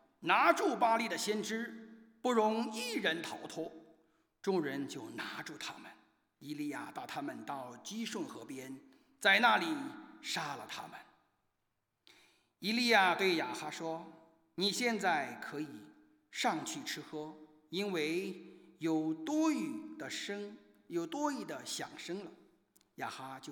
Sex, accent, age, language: male, Chinese, 50-69, English